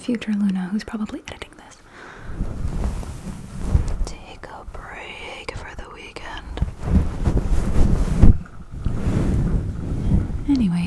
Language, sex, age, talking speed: English, female, 20-39, 70 wpm